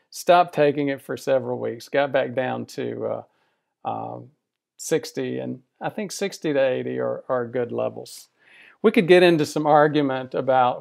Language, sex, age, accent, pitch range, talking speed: English, male, 50-69, American, 130-160 Hz, 165 wpm